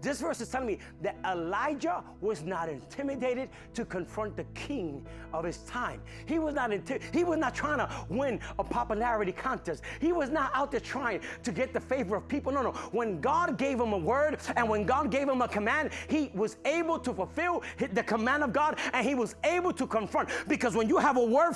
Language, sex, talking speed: English, male, 215 wpm